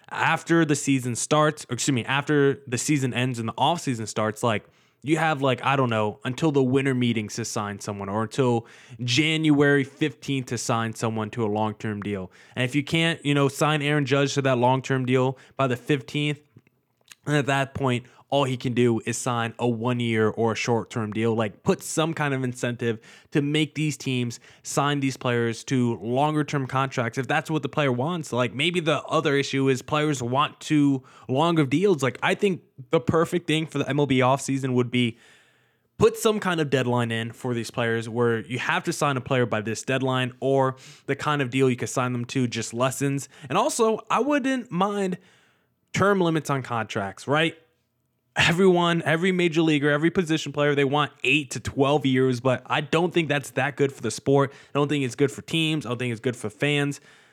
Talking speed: 210 wpm